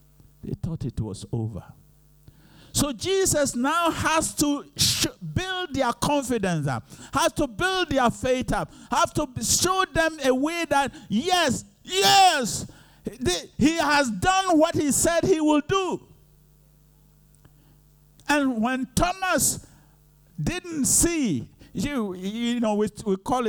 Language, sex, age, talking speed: English, male, 50-69, 120 wpm